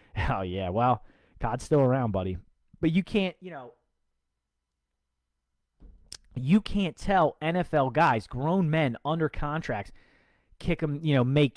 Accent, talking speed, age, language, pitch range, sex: American, 135 wpm, 30-49, English, 120-160 Hz, male